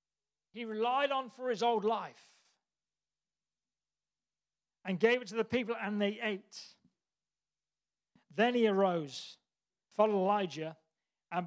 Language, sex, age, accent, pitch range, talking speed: English, male, 40-59, British, 190-230 Hz, 115 wpm